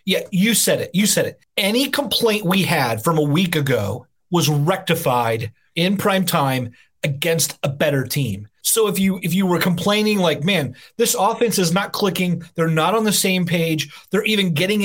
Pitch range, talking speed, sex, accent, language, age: 150-195 Hz, 190 wpm, male, American, English, 30-49